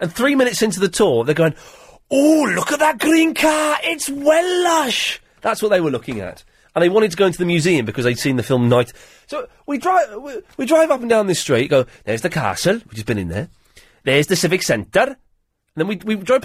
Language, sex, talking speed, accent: English, male, 235 wpm, British